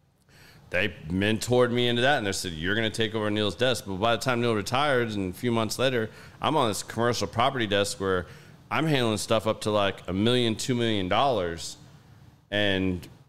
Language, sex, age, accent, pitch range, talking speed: English, male, 30-49, American, 100-120 Hz, 205 wpm